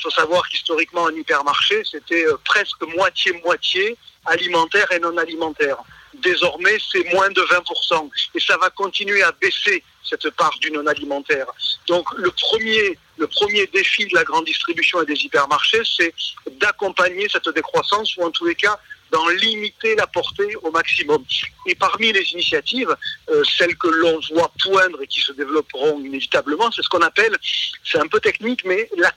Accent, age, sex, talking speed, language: French, 50-69, male, 165 wpm, French